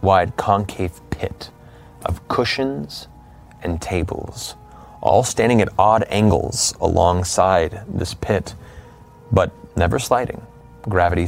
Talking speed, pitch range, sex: 100 wpm, 85-110 Hz, male